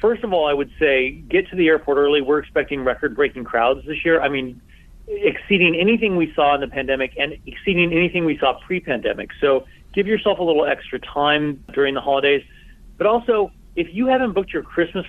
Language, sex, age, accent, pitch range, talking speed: English, male, 40-59, American, 135-175 Hz, 200 wpm